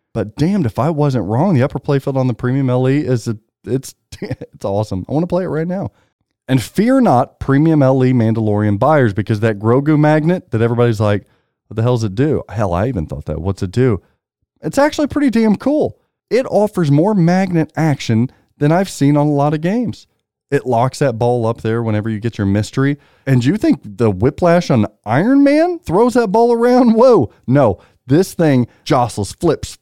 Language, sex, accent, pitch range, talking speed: English, male, American, 115-175 Hz, 205 wpm